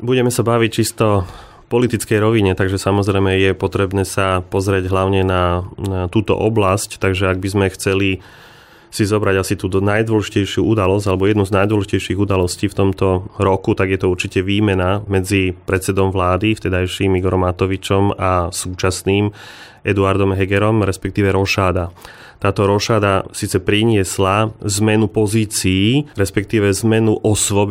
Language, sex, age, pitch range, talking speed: Slovak, male, 30-49, 95-105 Hz, 135 wpm